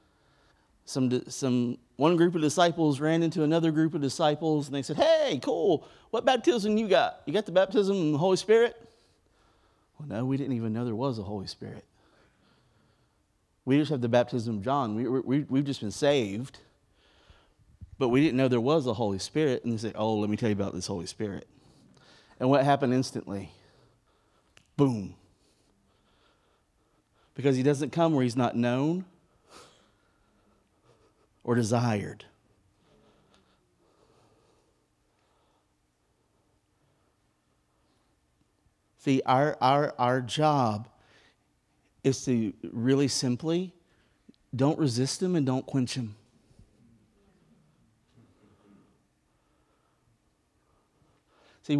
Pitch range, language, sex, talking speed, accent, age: 115-155 Hz, English, male, 125 wpm, American, 30-49